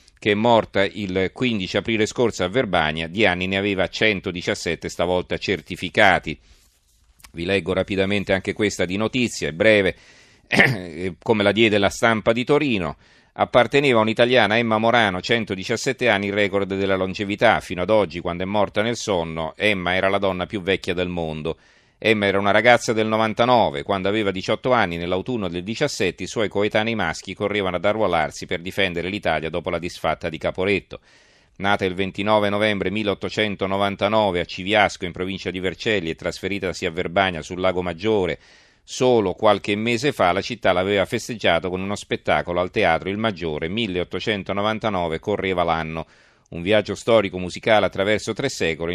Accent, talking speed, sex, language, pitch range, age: native, 160 wpm, male, Italian, 90-110 Hz, 40-59